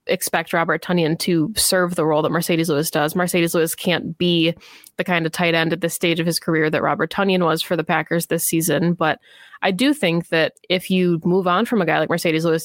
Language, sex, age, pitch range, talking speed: English, female, 20-39, 165-185 Hz, 235 wpm